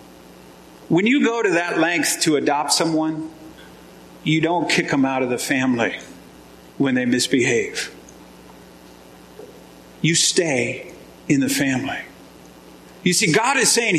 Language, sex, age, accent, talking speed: English, male, 50-69, American, 130 wpm